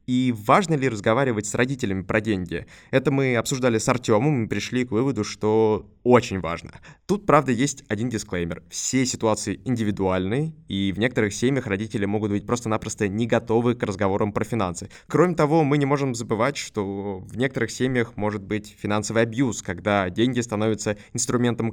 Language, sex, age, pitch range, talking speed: Russian, male, 20-39, 105-130 Hz, 165 wpm